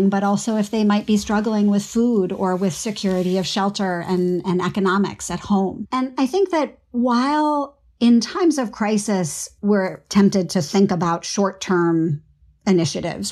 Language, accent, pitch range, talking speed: English, American, 175-220 Hz, 160 wpm